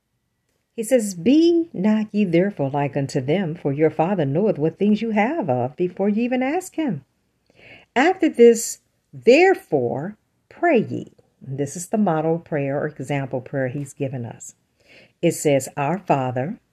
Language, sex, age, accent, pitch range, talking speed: English, female, 50-69, American, 140-215 Hz, 155 wpm